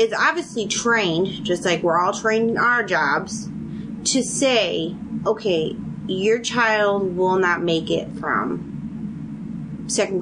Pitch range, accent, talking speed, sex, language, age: 185-225 Hz, American, 130 wpm, female, English, 30-49